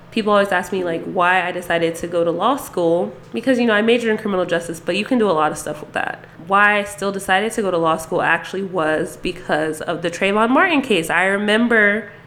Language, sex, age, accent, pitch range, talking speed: English, female, 20-39, American, 170-200 Hz, 245 wpm